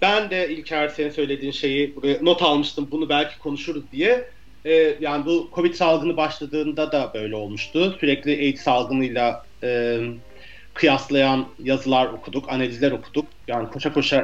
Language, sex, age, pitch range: Turkish, male, 40-59, 140-165 Hz